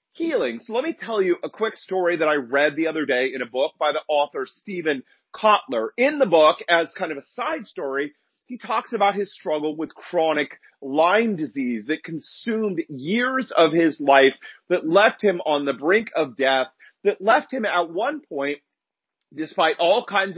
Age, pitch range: 40-59, 145-185 Hz